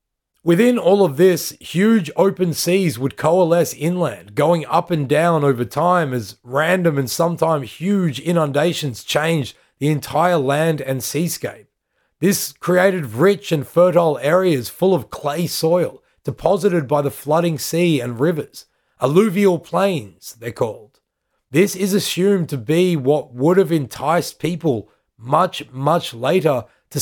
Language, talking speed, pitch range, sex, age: English, 140 wpm, 145-180 Hz, male, 30-49